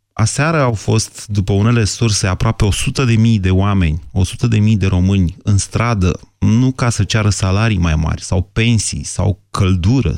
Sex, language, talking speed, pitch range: male, Romanian, 175 wpm, 95-115 Hz